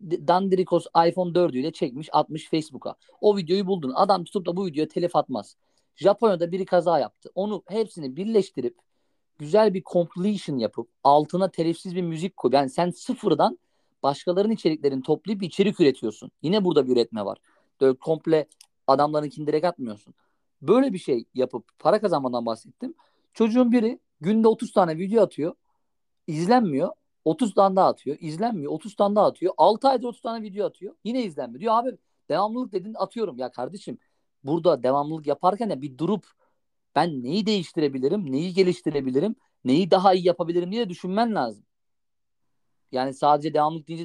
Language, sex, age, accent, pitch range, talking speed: Turkish, male, 50-69, native, 150-210 Hz, 155 wpm